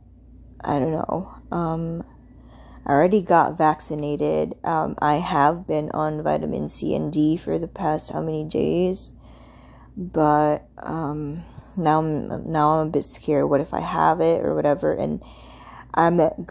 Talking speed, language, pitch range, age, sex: 150 wpm, English, 155-180 Hz, 20-39, female